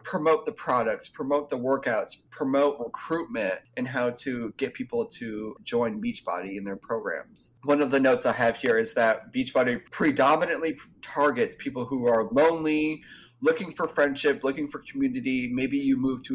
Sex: male